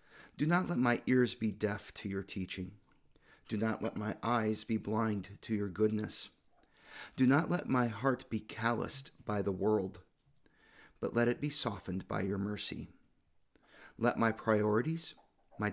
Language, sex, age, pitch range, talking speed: English, male, 40-59, 100-125 Hz, 160 wpm